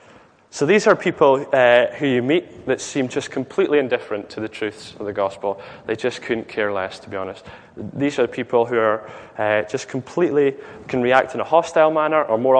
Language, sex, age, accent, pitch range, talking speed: English, male, 20-39, British, 110-135 Hz, 205 wpm